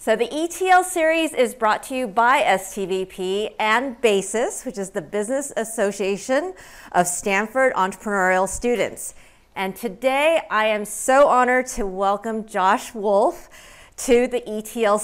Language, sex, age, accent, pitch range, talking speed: English, female, 40-59, American, 200-275 Hz, 135 wpm